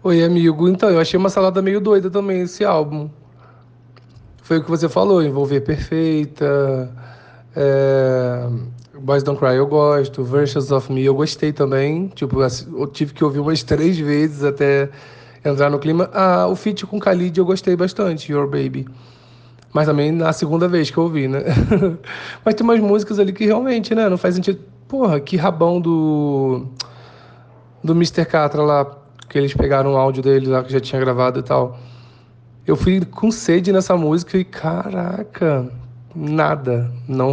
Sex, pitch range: male, 130-170 Hz